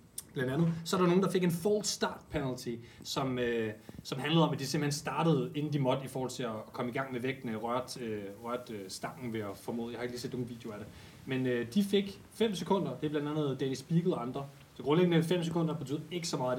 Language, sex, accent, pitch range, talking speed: Danish, male, native, 125-165 Hz, 255 wpm